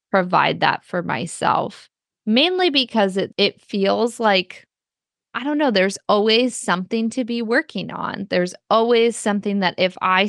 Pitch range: 175-230 Hz